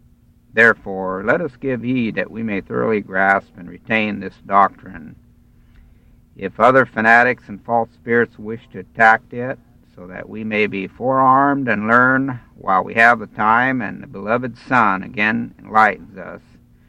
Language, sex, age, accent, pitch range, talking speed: English, male, 60-79, American, 100-125 Hz, 155 wpm